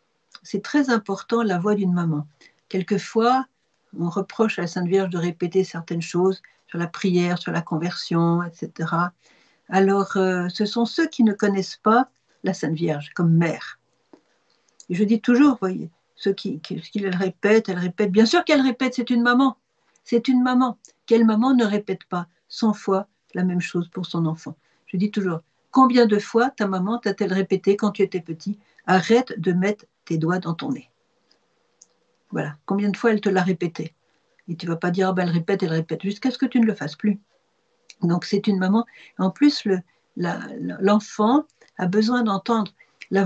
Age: 60-79